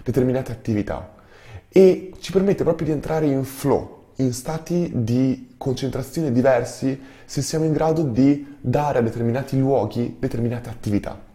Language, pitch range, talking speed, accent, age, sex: Italian, 110-135 Hz, 140 wpm, native, 20-39, male